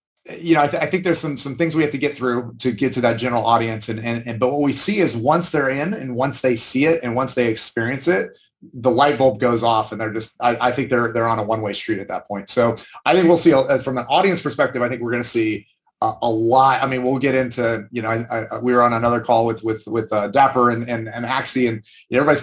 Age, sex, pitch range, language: 30-49, male, 115-140 Hz, English